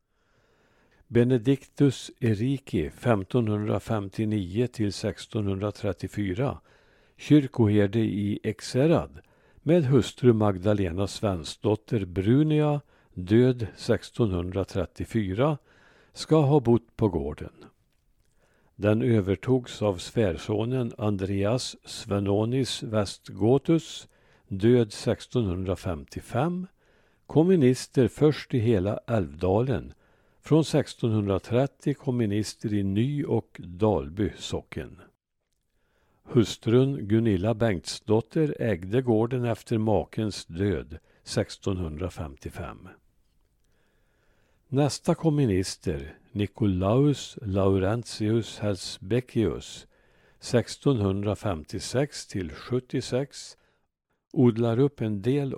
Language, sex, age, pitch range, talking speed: Swedish, male, 60-79, 100-125 Hz, 65 wpm